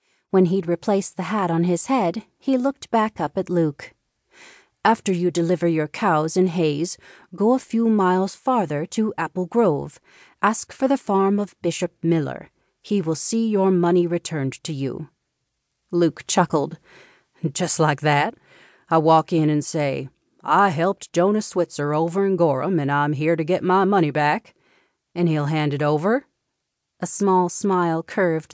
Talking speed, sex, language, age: 165 wpm, female, English, 40-59